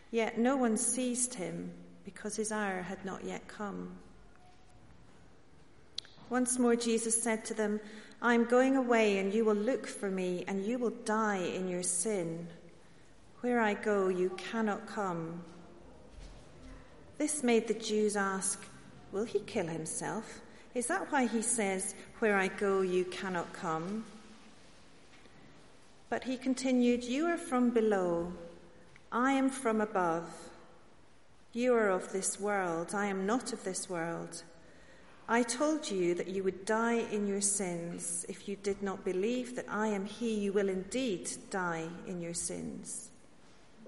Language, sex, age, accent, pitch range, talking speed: English, female, 40-59, British, 180-230 Hz, 150 wpm